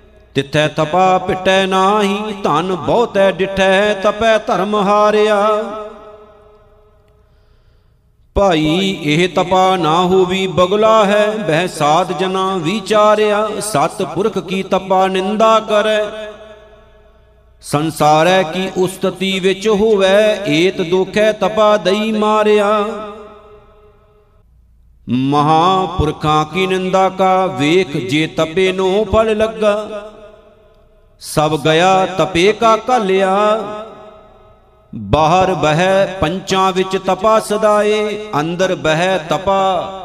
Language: Punjabi